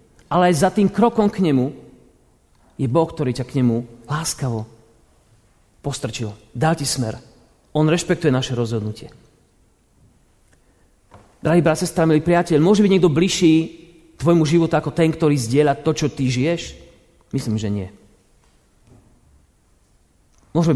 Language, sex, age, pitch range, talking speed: Slovak, male, 40-59, 120-165 Hz, 125 wpm